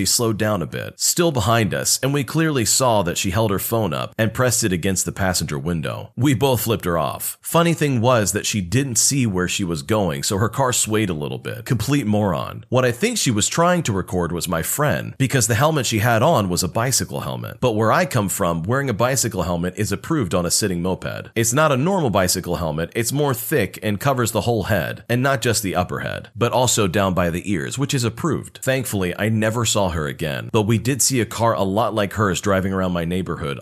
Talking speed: 240 wpm